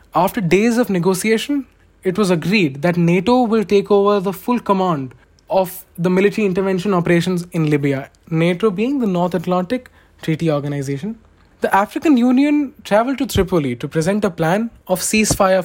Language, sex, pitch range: English, male, 165-220 Hz